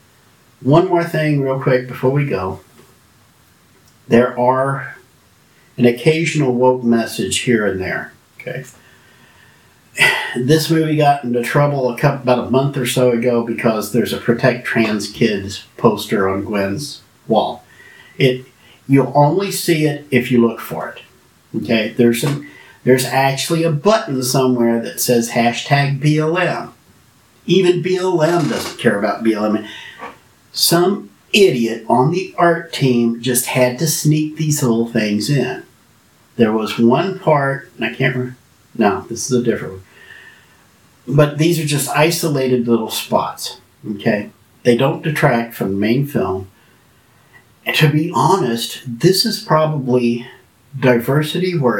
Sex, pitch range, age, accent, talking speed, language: male, 115-150 Hz, 50-69, American, 140 wpm, English